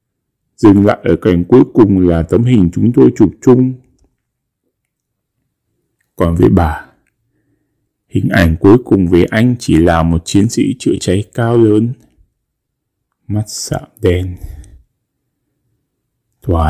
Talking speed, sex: 125 wpm, male